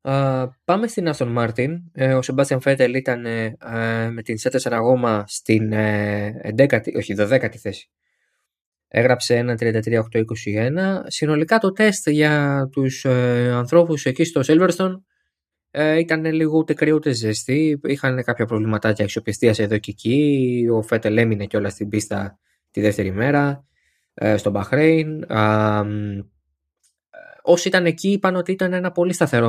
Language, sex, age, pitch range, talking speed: Greek, male, 20-39, 115-170 Hz, 135 wpm